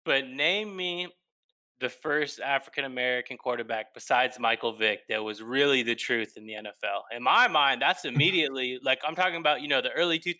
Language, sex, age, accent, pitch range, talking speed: English, male, 20-39, American, 125-190 Hz, 180 wpm